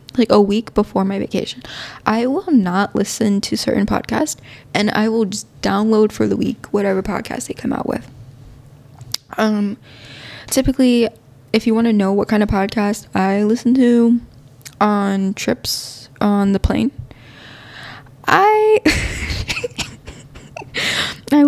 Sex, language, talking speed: female, English, 135 wpm